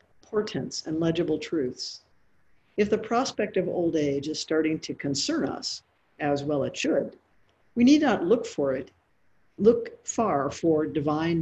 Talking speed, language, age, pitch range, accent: 150 wpm, English, 50-69, 160-210 Hz, American